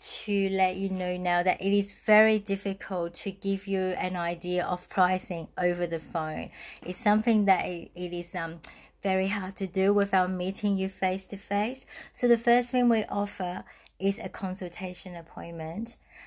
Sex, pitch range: female, 175-205 Hz